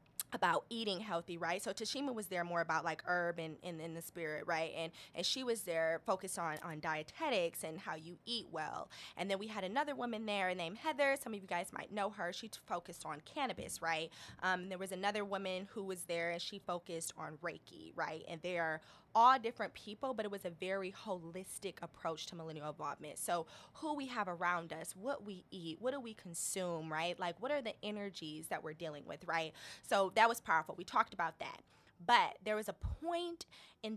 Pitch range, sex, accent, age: 165-205 Hz, female, American, 20-39